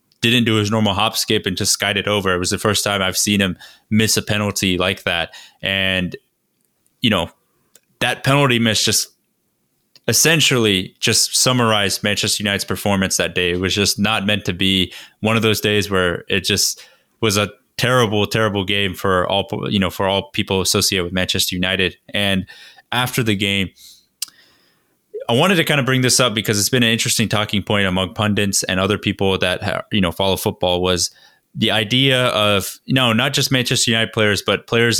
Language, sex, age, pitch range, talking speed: English, male, 20-39, 95-110 Hz, 195 wpm